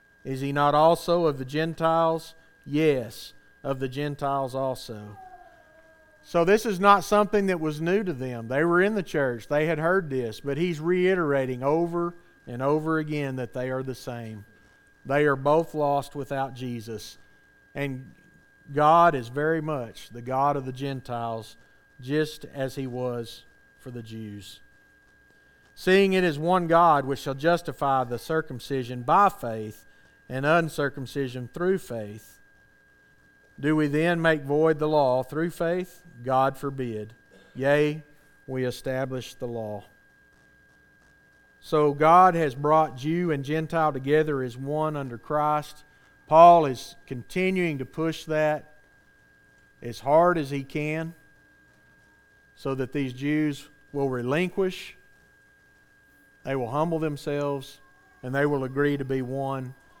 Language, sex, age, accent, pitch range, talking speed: English, male, 40-59, American, 130-160 Hz, 140 wpm